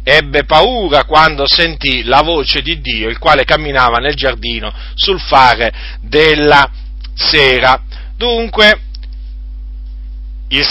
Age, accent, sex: 40-59, native, male